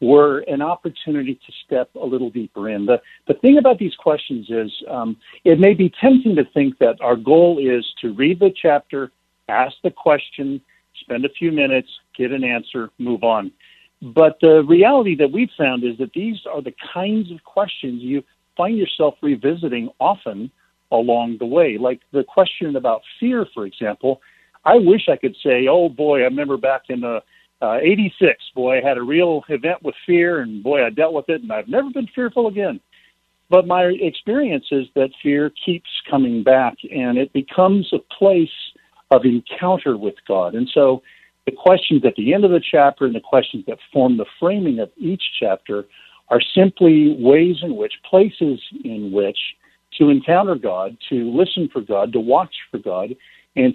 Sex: male